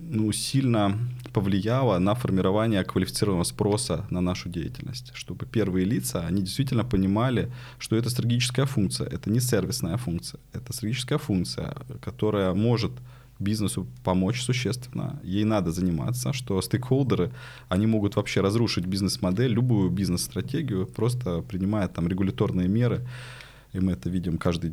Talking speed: 130 wpm